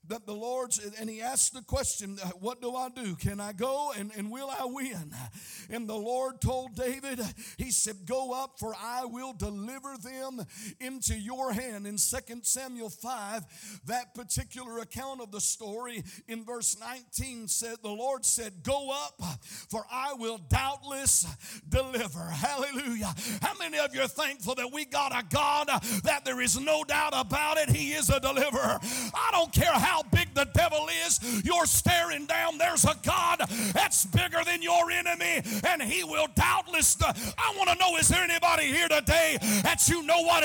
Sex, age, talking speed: male, 50-69, 180 wpm